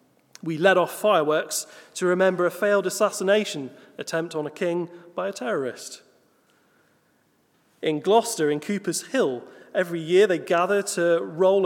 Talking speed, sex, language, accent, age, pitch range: 140 wpm, male, English, British, 30-49, 160-210 Hz